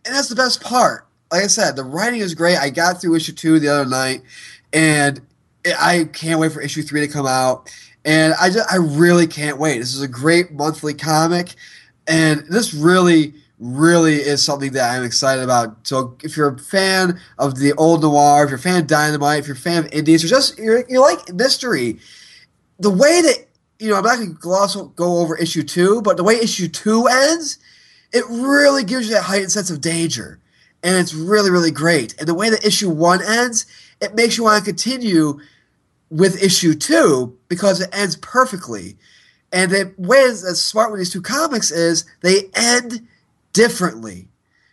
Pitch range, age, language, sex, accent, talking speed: 150-210 Hz, 20-39, English, male, American, 195 wpm